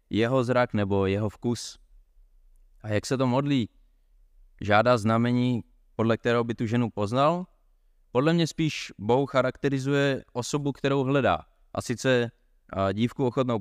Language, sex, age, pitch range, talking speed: Czech, male, 20-39, 100-120 Hz, 135 wpm